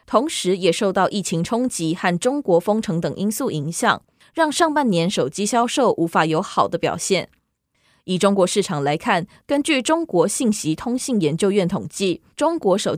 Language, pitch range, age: Chinese, 170-240 Hz, 20-39